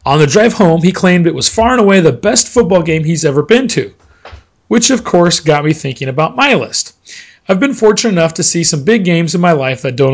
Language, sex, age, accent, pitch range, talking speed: English, male, 40-59, American, 135-180 Hz, 250 wpm